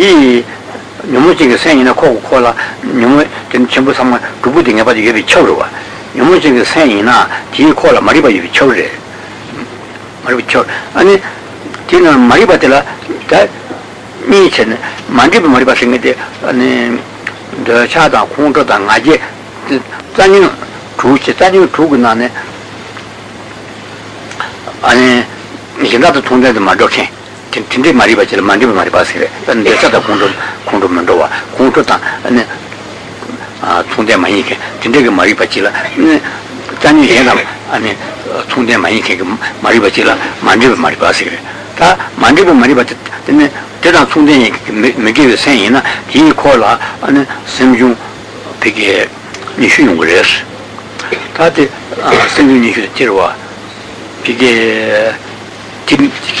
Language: Italian